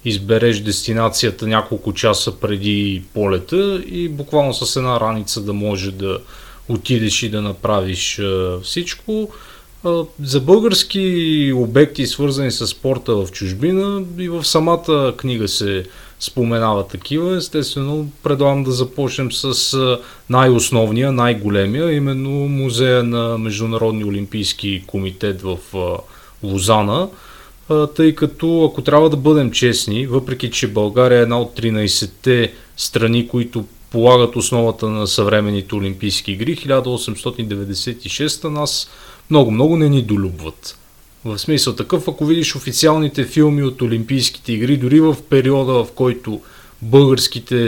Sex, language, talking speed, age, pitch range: male, Bulgarian, 120 wpm, 30-49, 105-140 Hz